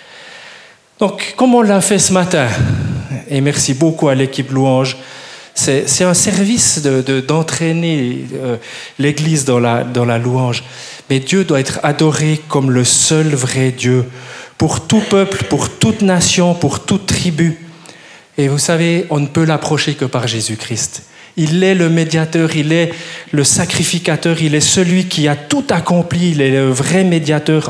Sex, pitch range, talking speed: male, 135-175 Hz, 155 wpm